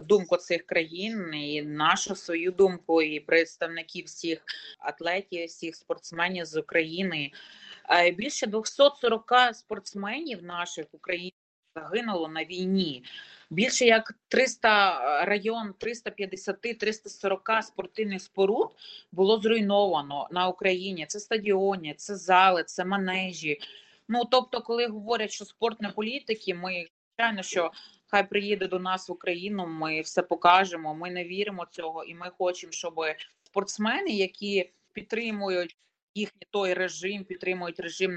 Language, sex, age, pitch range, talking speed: Ukrainian, female, 30-49, 175-215 Hz, 120 wpm